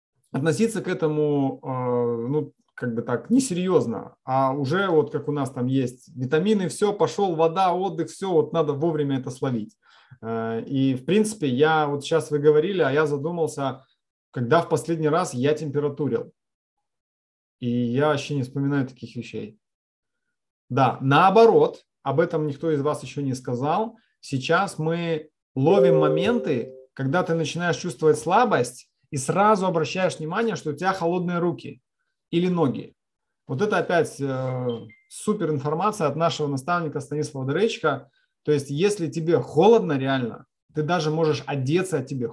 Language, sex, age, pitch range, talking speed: Russian, male, 30-49, 135-175 Hz, 150 wpm